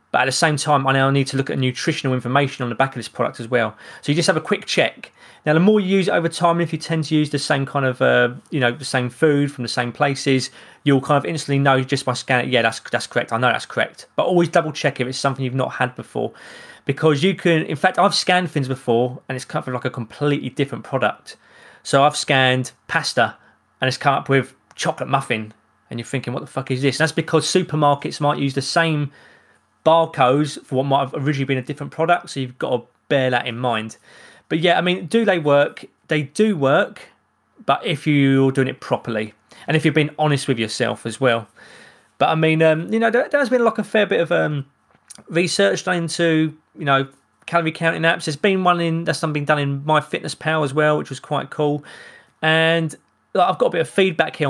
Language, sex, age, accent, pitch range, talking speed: English, male, 20-39, British, 130-160 Hz, 240 wpm